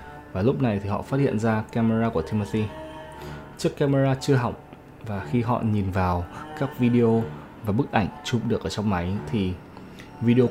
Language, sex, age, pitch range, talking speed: Vietnamese, male, 20-39, 105-145 Hz, 185 wpm